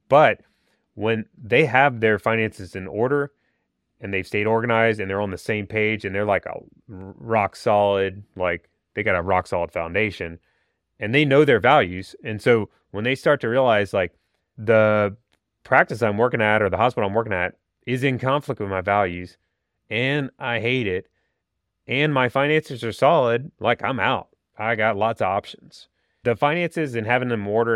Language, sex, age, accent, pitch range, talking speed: English, male, 30-49, American, 100-115 Hz, 180 wpm